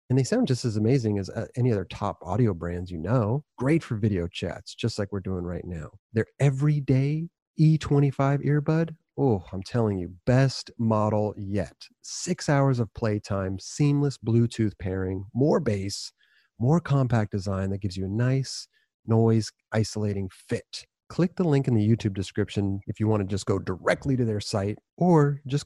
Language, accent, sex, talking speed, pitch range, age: English, American, male, 175 wpm, 100-135 Hz, 30-49